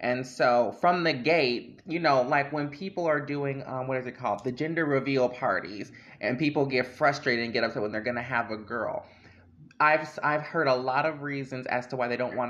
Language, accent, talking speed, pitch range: English, American, 230 wpm, 125-150 Hz